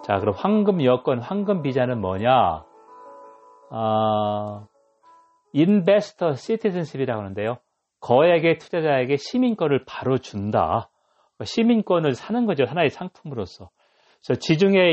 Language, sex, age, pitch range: Korean, male, 40-59, 115-180 Hz